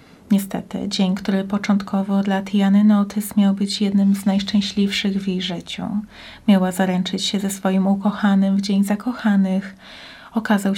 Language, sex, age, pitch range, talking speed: Polish, female, 30-49, 195-215 Hz, 140 wpm